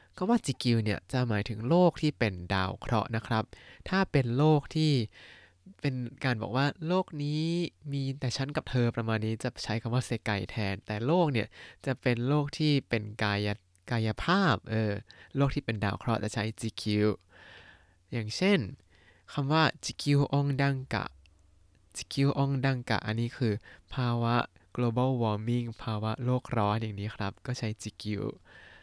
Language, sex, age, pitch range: Thai, male, 20-39, 105-135 Hz